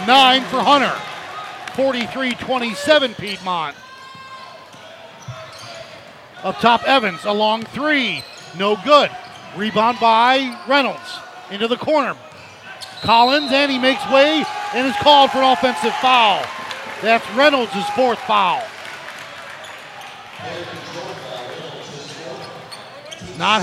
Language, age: English, 50-69